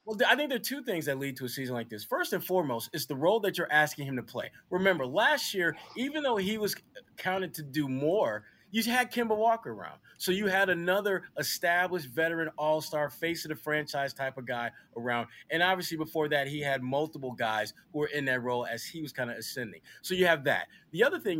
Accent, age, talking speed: American, 30-49, 235 wpm